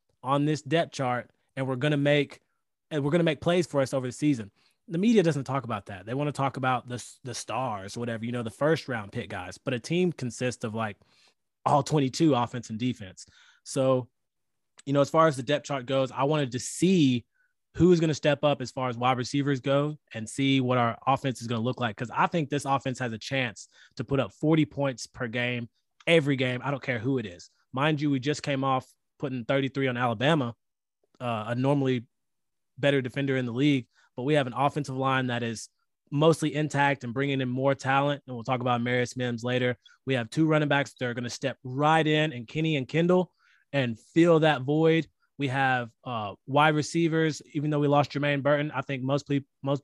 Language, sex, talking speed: English, male, 225 wpm